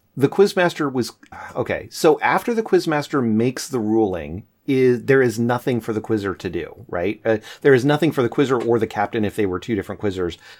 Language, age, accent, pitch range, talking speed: English, 30-49, American, 100-120 Hz, 220 wpm